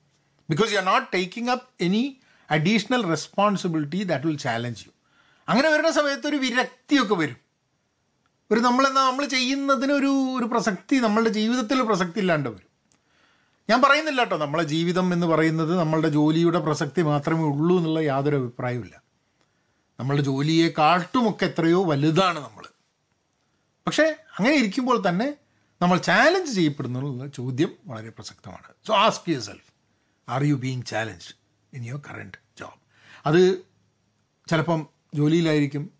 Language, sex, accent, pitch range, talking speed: Malayalam, male, native, 150-225 Hz, 130 wpm